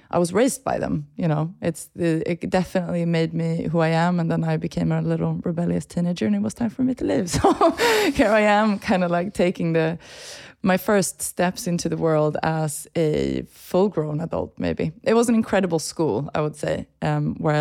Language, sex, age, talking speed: English, female, 20-39, 215 wpm